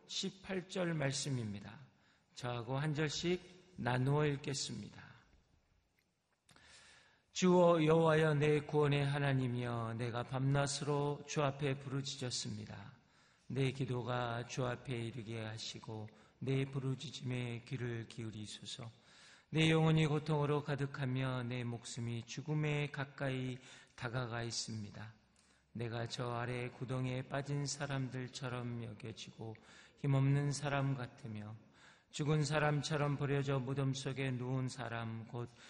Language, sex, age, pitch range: Korean, male, 40-59, 120-145 Hz